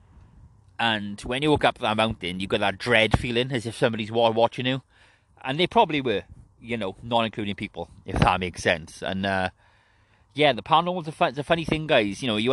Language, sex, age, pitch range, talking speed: English, male, 30-49, 100-130 Hz, 210 wpm